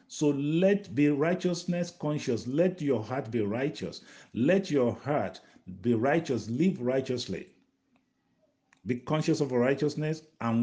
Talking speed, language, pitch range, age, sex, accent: 125 wpm, English, 115-175 Hz, 50-69, male, Nigerian